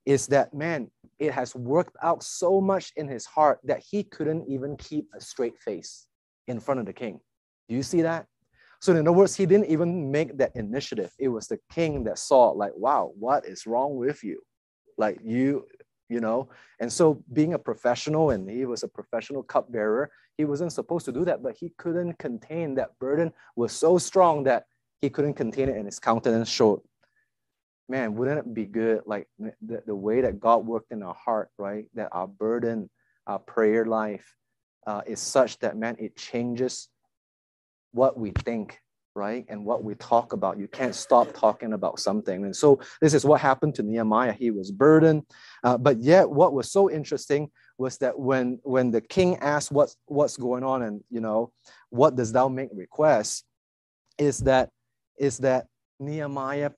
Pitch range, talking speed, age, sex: 115-155 Hz, 185 wpm, 20-39, male